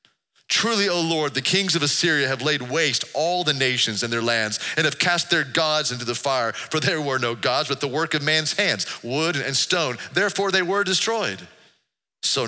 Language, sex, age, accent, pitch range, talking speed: English, male, 40-59, American, 115-160 Hz, 205 wpm